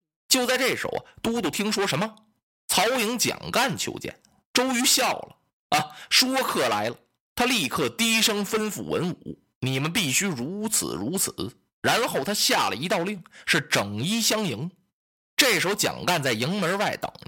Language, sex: Chinese, male